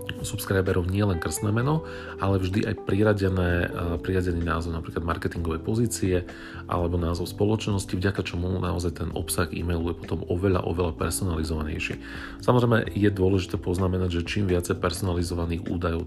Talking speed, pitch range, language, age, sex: 135 wpm, 85-105 Hz, Slovak, 40-59, male